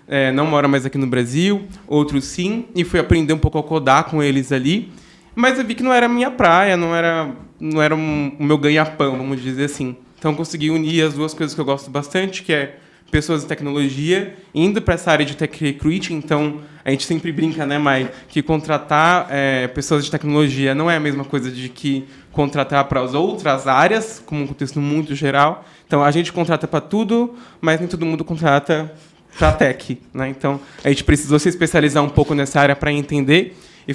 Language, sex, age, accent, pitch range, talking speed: Portuguese, male, 20-39, Brazilian, 140-170 Hz, 210 wpm